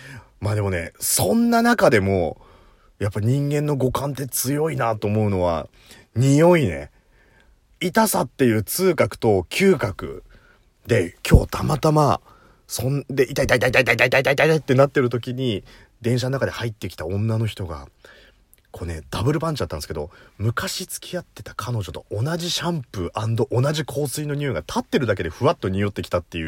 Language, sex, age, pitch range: Japanese, male, 30-49, 105-165 Hz